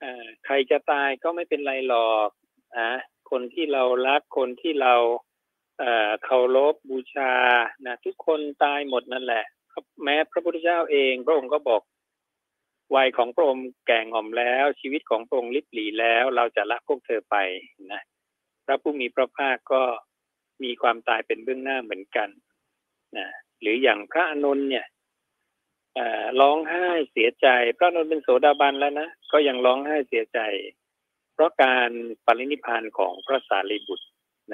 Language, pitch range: Thai, 115-150 Hz